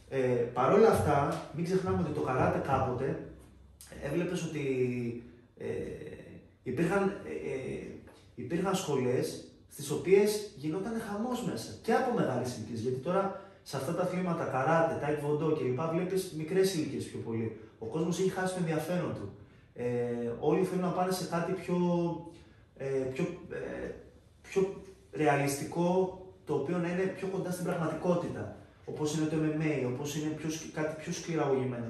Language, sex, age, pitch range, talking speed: Greek, male, 30-49, 120-165 Hz, 150 wpm